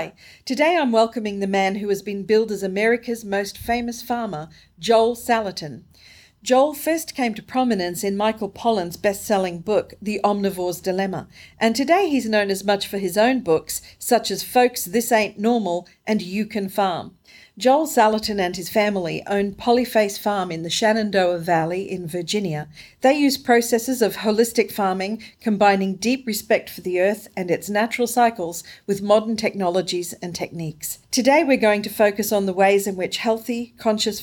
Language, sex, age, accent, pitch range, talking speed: English, female, 50-69, Australian, 185-230 Hz, 170 wpm